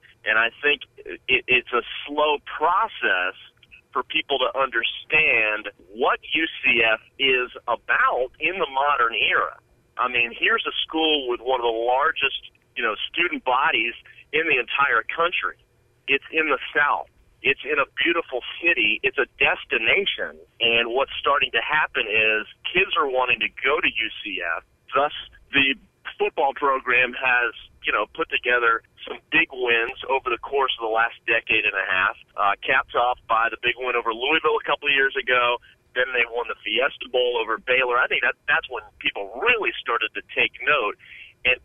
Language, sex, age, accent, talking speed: English, male, 40-59, American, 165 wpm